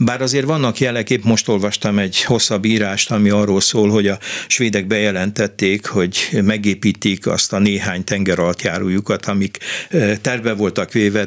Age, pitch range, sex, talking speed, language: 60-79, 100-115 Hz, male, 145 wpm, Hungarian